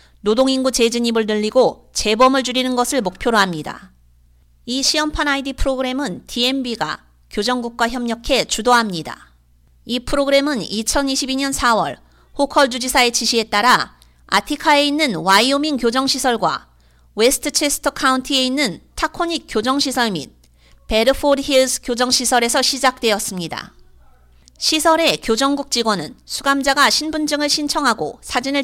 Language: Korean